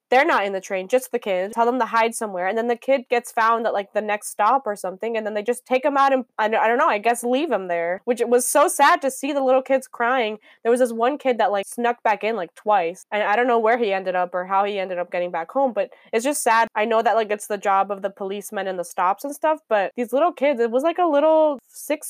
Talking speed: 300 wpm